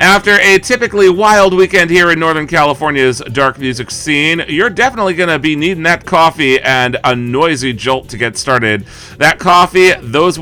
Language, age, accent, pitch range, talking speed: English, 40-59, American, 130-180 Hz, 175 wpm